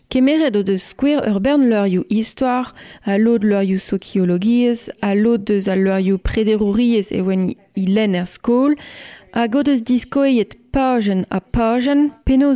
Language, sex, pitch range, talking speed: French, female, 195-235 Hz, 80 wpm